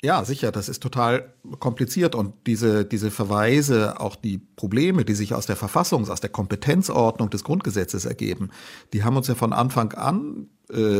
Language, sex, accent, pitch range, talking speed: German, male, German, 100-125 Hz, 175 wpm